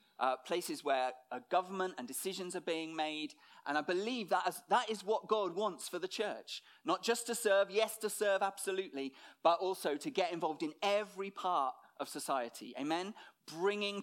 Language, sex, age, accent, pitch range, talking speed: English, male, 40-59, British, 160-210 Hz, 185 wpm